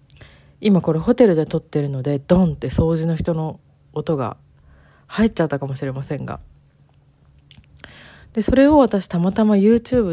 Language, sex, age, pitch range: Japanese, female, 40-59, 145-210 Hz